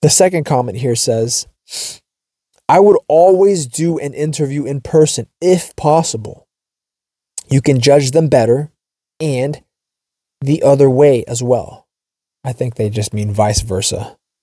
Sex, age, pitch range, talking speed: male, 20-39, 115-145 Hz, 135 wpm